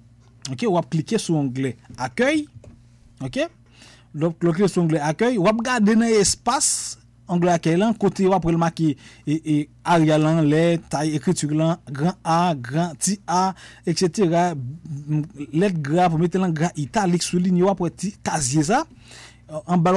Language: French